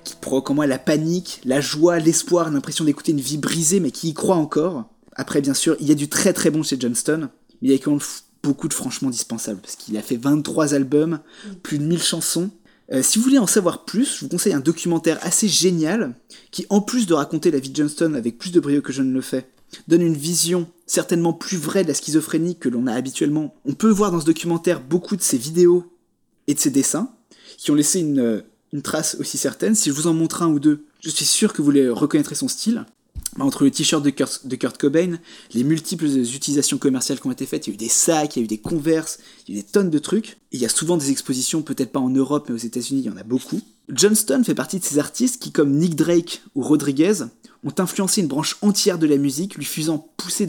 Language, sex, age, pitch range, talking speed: French, male, 20-39, 145-190 Hz, 255 wpm